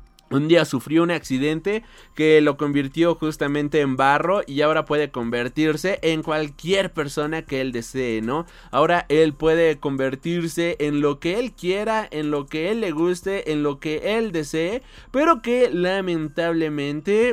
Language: Spanish